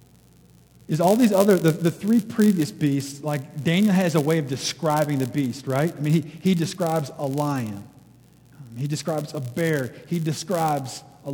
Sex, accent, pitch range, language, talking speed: male, American, 140-180 Hz, English, 175 wpm